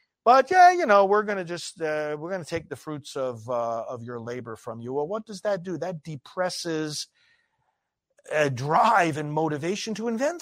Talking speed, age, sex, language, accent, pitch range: 190 wpm, 50-69, male, English, American, 140-225 Hz